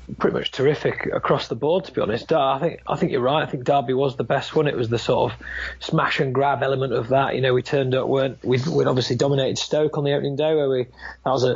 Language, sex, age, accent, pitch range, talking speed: English, male, 30-49, British, 130-165 Hz, 275 wpm